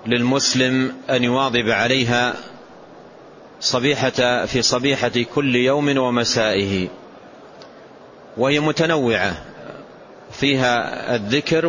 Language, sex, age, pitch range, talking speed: Arabic, male, 40-59, 115-135 Hz, 70 wpm